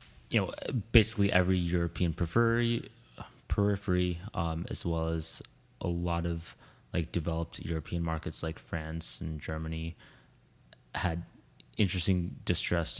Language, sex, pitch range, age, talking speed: English, male, 80-95 Hz, 20-39, 115 wpm